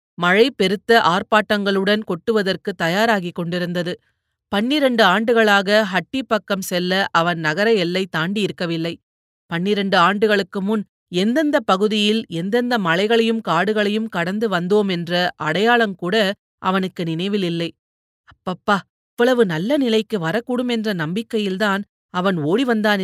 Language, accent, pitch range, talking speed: Tamil, native, 175-220 Hz, 95 wpm